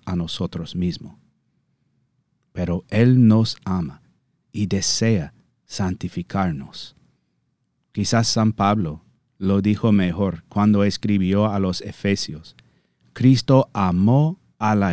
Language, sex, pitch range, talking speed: Spanish, male, 85-110 Hz, 100 wpm